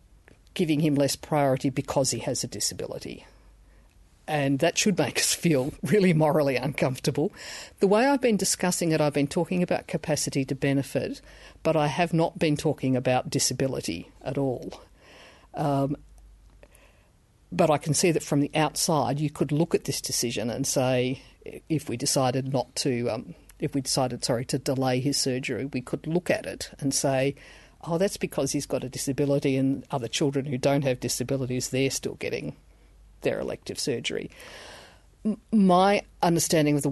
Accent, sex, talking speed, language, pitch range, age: Australian, female, 170 wpm, English, 130-155 Hz, 50-69